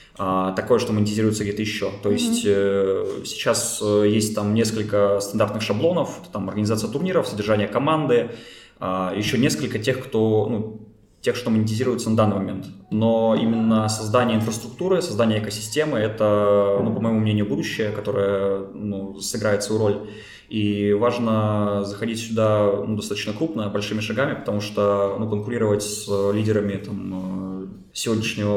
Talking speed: 130 wpm